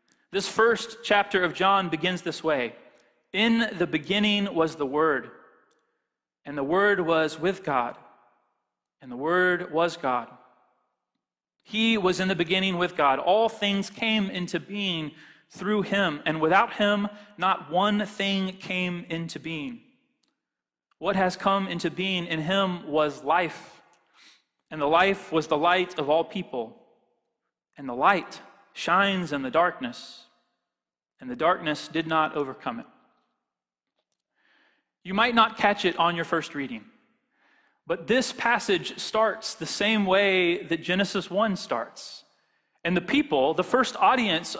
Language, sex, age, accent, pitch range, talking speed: English, male, 30-49, American, 170-225 Hz, 145 wpm